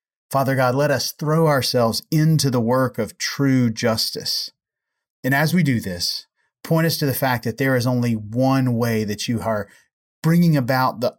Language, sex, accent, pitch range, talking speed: English, male, American, 125-145 Hz, 180 wpm